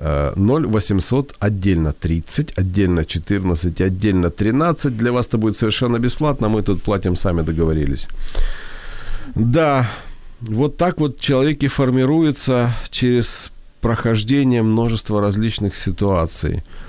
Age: 40-59